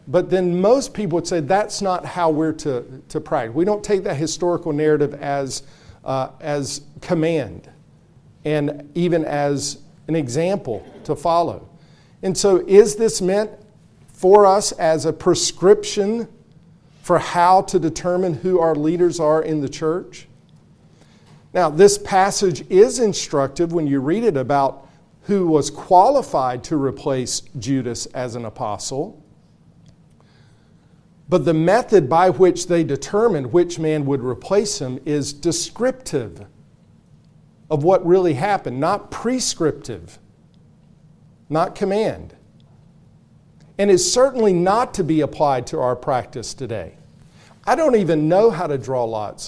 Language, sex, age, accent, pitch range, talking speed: English, male, 50-69, American, 145-185 Hz, 135 wpm